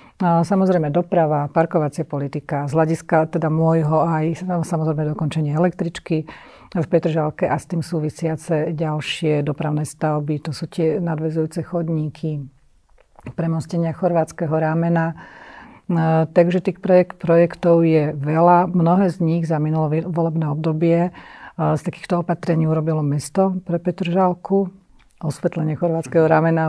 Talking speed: 120 wpm